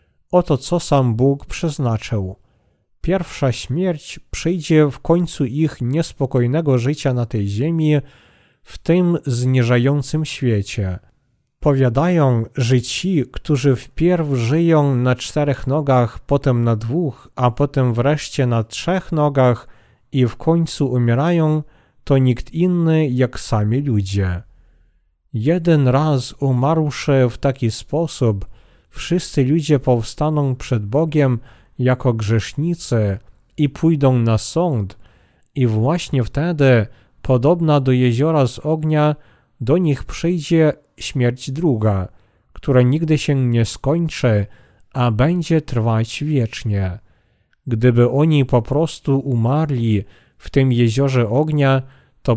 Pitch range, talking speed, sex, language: 115-150 Hz, 110 wpm, male, Polish